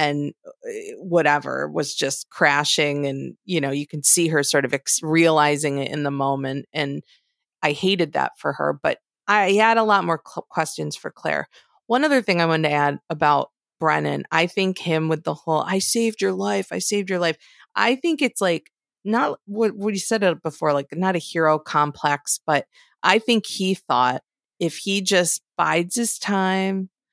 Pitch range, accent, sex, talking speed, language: 150-195 Hz, American, female, 185 wpm, English